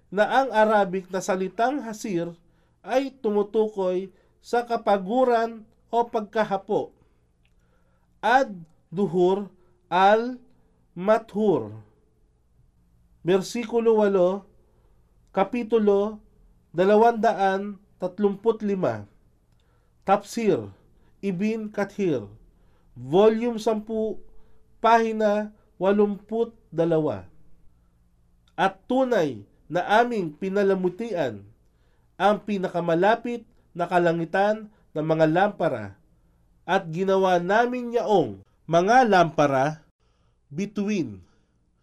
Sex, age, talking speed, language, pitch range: male, 40-59, 65 wpm, Filipino, 145-215 Hz